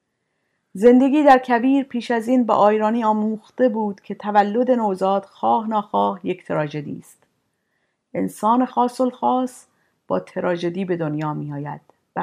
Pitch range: 185-235 Hz